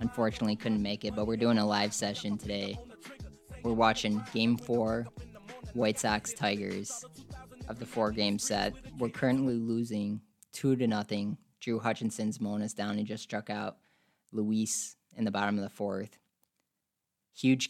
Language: English